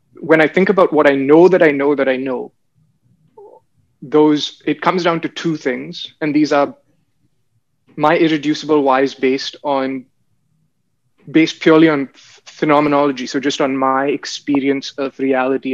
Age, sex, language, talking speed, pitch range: 20-39, male, English, 155 wpm, 135-155 Hz